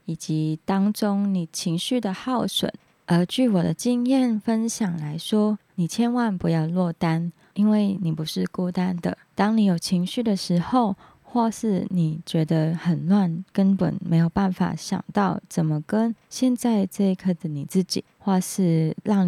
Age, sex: 20-39, female